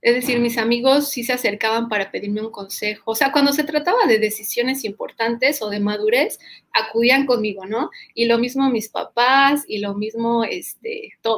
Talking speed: 180 wpm